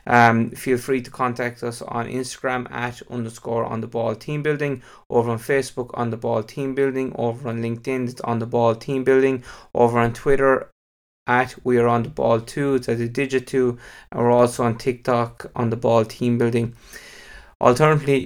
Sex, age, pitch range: male, 20-39, 120-130 Hz